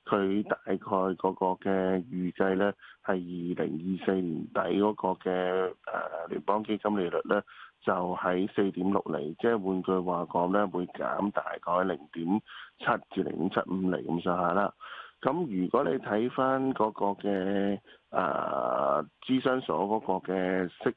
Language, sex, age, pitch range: Chinese, male, 20-39, 90-110 Hz